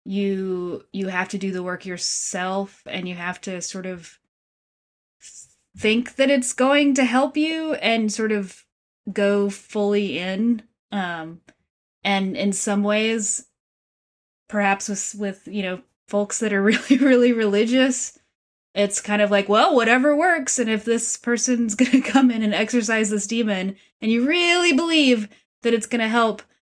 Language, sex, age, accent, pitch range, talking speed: English, female, 20-39, American, 195-245 Hz, 155 wpm